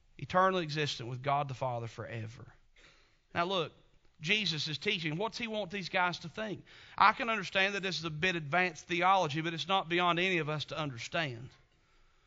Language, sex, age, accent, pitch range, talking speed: English, male, 40-59, American, 160-220 Hz, 185 wpm